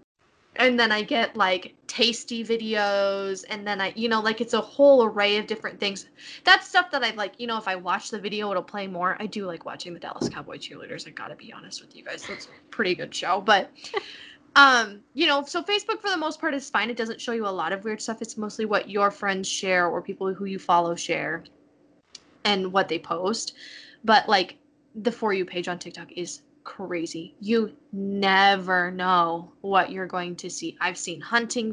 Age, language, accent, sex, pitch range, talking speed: 10-29, English, American, female, 190-245 Hz, 215 wpm